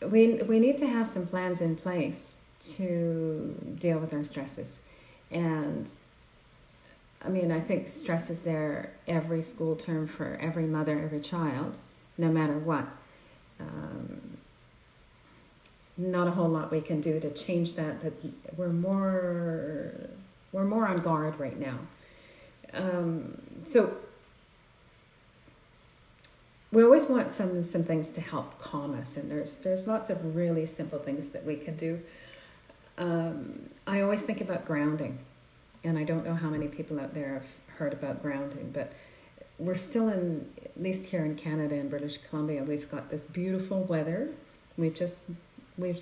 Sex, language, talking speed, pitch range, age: female, English, 150 wpm, 150-185 Hz, 40-59